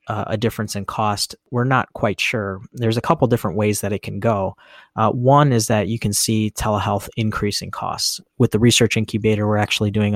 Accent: American